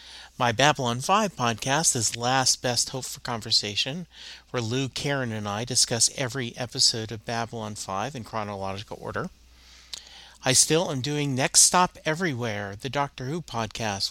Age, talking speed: 40-59, 150 wpm